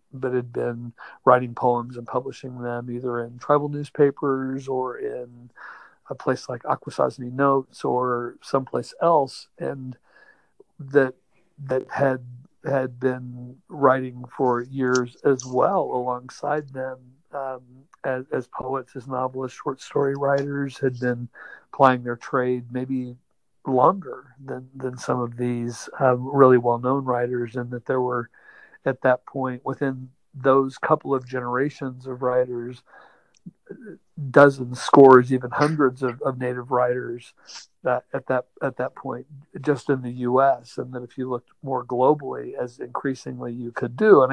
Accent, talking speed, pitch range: American, 140 wpm, 125-135 Hz